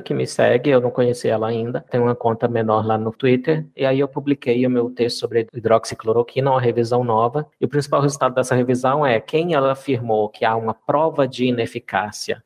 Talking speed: 205 wpm